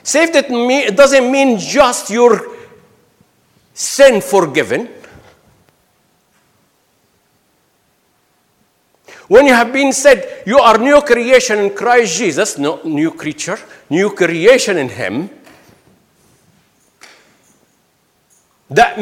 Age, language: 60-79, English